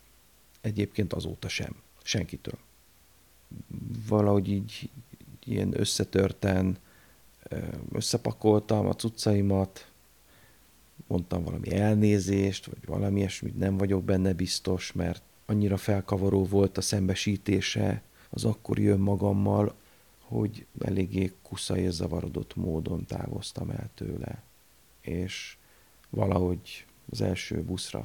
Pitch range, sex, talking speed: 90-110 Hz, male, 95 wpm